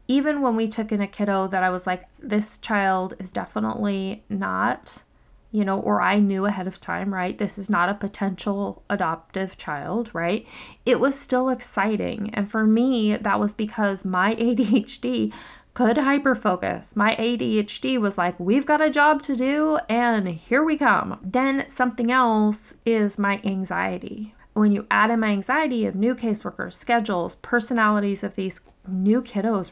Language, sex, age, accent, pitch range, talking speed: English, female, 20-39, American, 195-245 Hz, 165 wpm